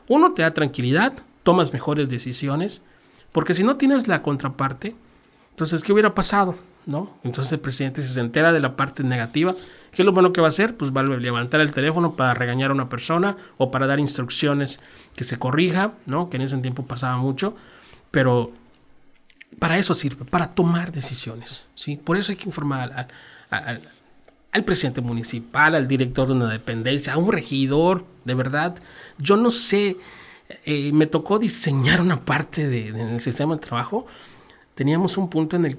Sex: male